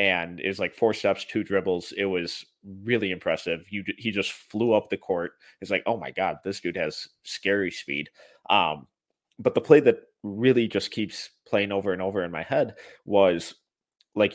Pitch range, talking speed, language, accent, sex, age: 90-105 Hz, 190 wpm, English, American, male, 20-39